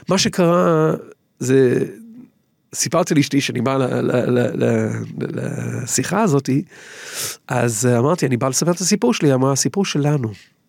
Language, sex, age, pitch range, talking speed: Hebrew, male, 40-59, 125-195 Hz, 135 wpm